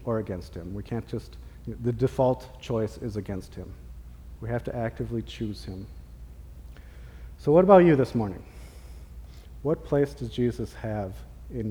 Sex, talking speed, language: male, 165 wpm, English